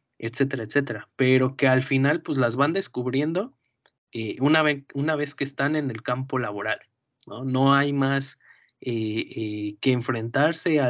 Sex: male